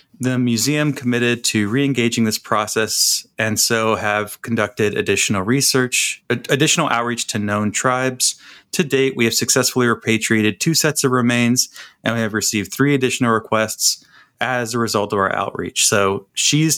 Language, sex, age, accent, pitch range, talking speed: English, male, 30-49, American, 105-130 Hz, 155 wpm